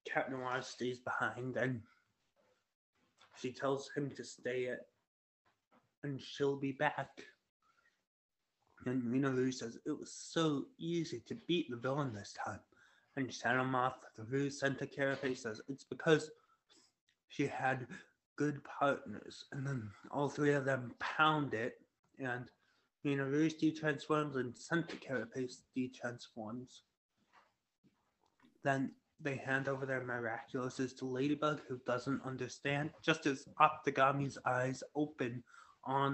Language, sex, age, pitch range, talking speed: English, male, 20-39, 125-145 Hz, 130 wpm